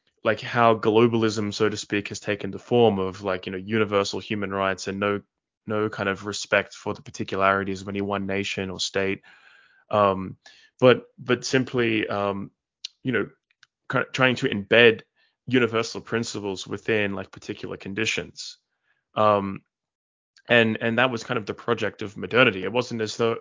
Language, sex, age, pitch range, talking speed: English, male, 20-39, 100-115 Hz, 160 wpm